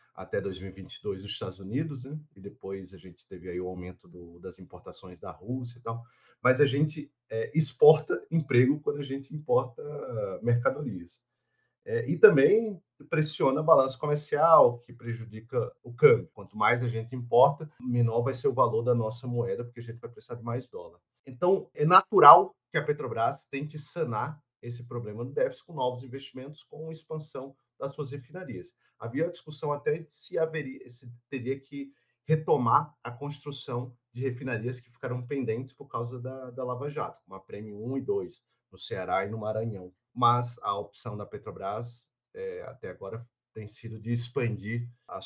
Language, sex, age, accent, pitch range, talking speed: Portuguese, male, 40-59, Brazilian, 115-145 Hz, 175 wpm